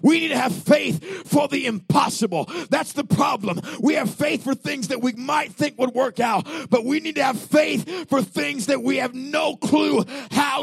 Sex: male